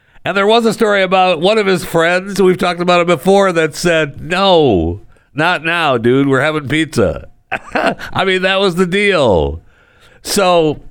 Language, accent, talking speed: English, American, 170 wpm